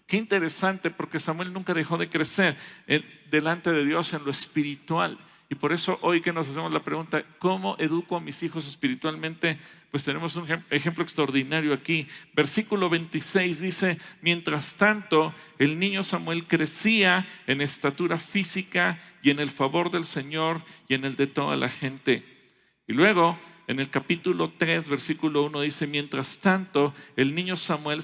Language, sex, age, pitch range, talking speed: English, male, 50-69, 140-170 Hz, 160 wpm